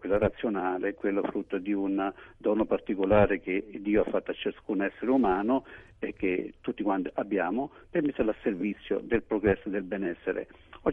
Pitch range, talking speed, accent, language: 105-120 Hz, 170 wpm, native, Italian